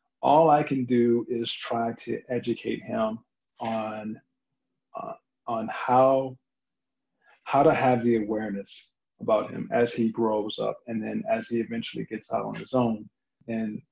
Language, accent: English, American